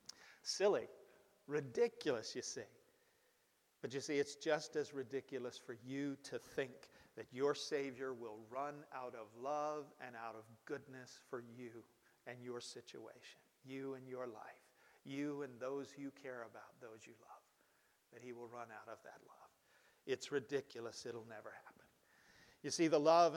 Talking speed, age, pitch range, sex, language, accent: 160 wpm, 50-69, 130-170 Hz, male, English, American